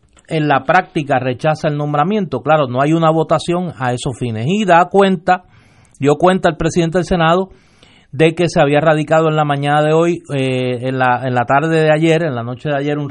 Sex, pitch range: male, 135-165 Hz